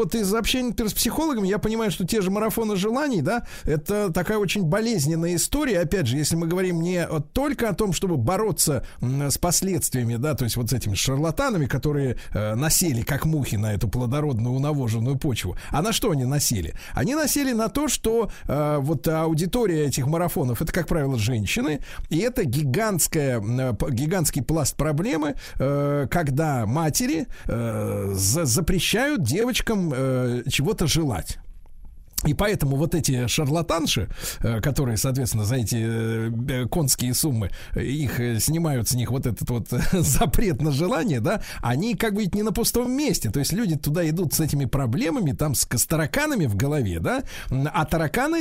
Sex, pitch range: male, 130-195 Hz